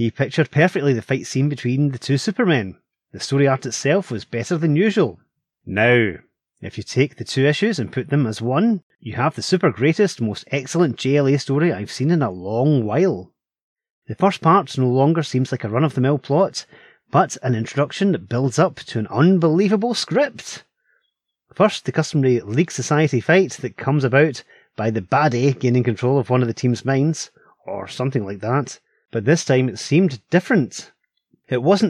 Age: 30-49